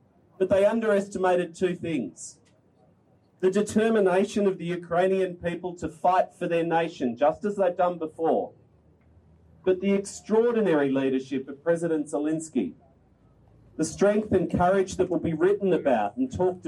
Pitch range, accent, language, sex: 155-195 Hz, Australian, Ukrainian, male